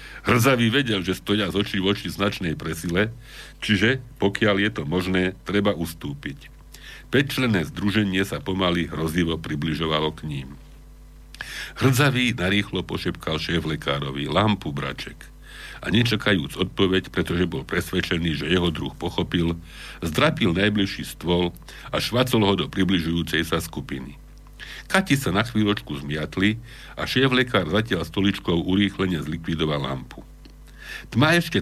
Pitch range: 80-105 Hz